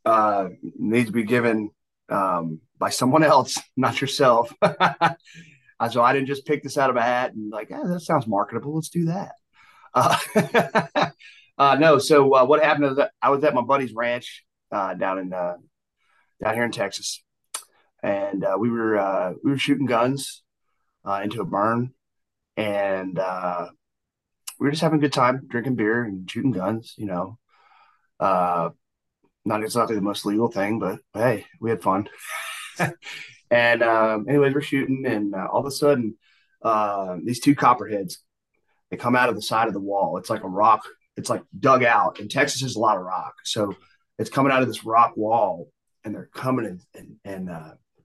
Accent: American